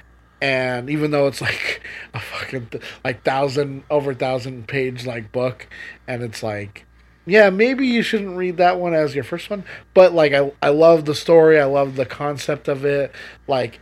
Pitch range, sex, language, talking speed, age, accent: 130-165 Hz, male, English, 180 wpm, 30-49, American